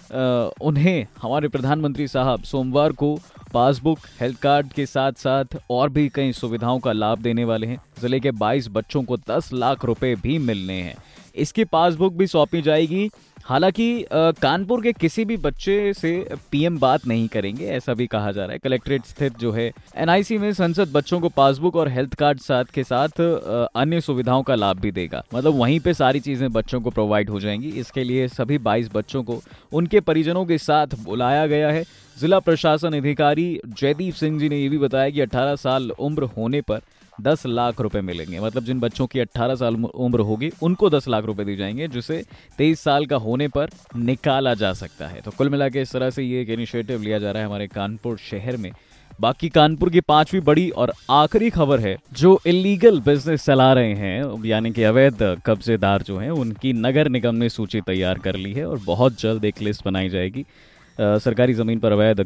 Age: 20-39